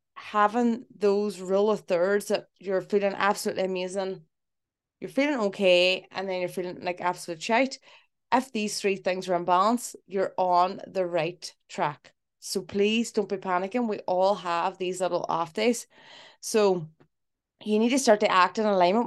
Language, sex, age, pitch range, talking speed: English, female, 20-39, 180-215 Hz, 165 wpm